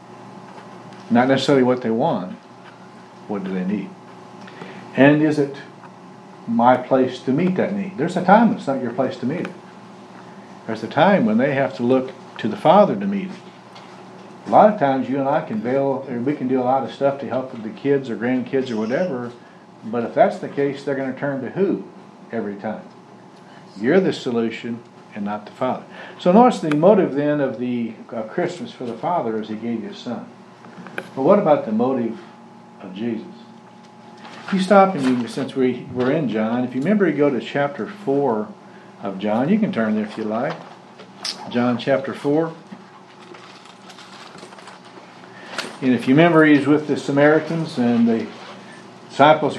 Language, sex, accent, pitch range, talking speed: English, male, American, 120-165 Hz, 185 wpm